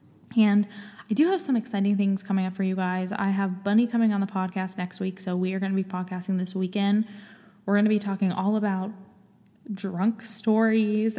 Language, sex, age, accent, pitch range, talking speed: English, female, 10-29, American, 185-210 Hz, 210 wpm